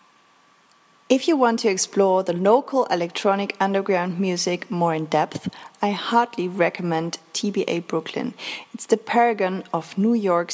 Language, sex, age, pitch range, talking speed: English, female, 30-49, 175-230 Hz, 135 wpm